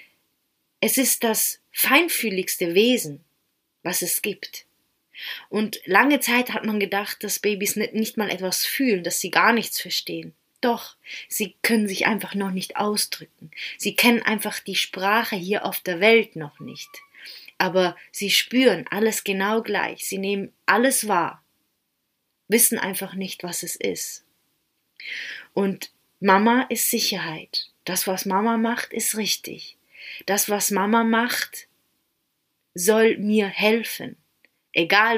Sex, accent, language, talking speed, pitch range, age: female, German, German, 135 wpm, 190-230 Hz, 30-49